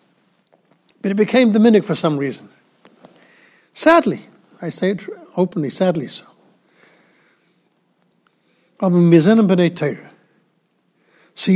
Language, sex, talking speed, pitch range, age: English, male, 90 wpm, 160-210 Hz, 60-79